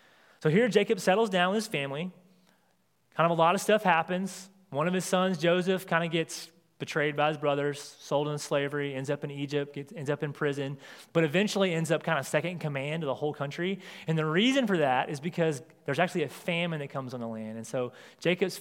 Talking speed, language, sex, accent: 225 wpm, English, male, American